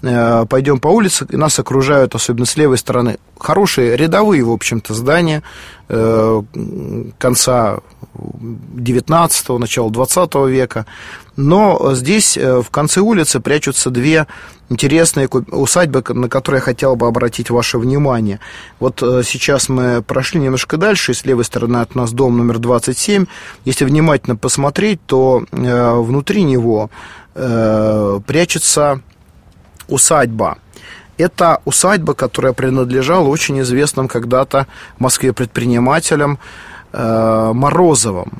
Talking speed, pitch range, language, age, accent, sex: 110 wpm, 120-145 Hz, Russian, 30-49, native, male